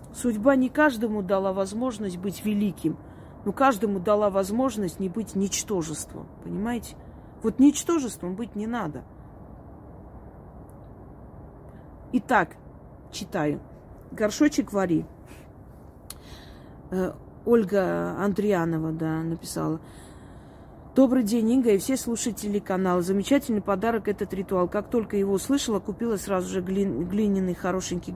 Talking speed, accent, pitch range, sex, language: 105 wpm, native, 190-235 Hz, female, Russian